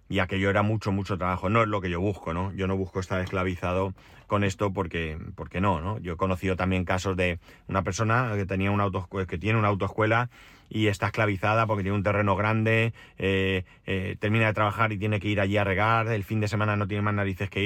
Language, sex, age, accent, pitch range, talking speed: Spanish, male, 30-49, Spanish, 95-115 Hz, 235 wpm